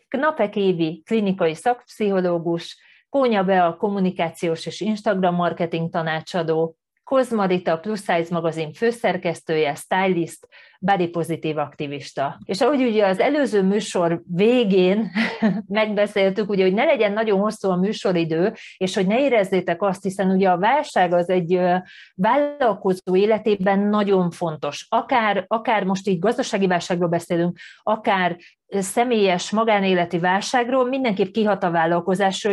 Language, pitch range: Hungarian, 175-215 Hz